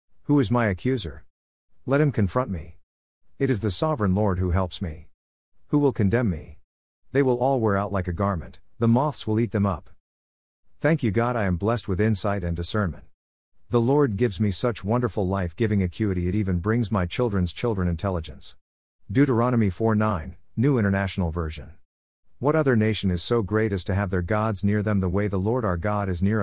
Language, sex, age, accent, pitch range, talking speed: English, male, 50-69, American, 90-115 Hz, 195 wpm